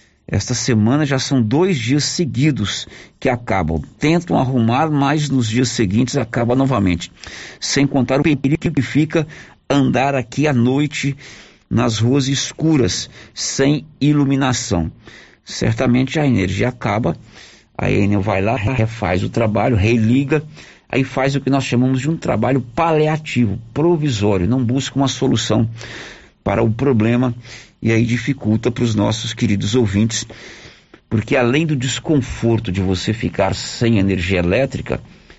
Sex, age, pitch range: male, 50-69, 100-140 Hz